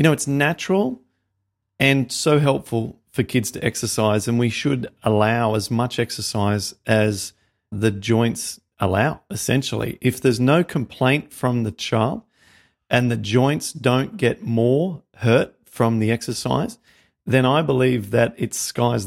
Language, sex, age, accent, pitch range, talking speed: English, male, 40-59, Australian, 115-135 Hz, 145 wpm